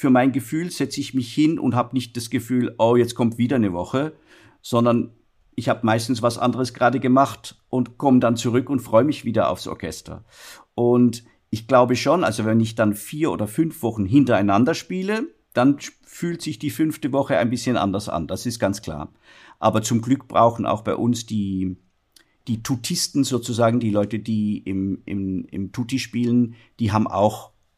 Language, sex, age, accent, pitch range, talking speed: German, male, 50-69, German, 110-130 Hz, 185 wpm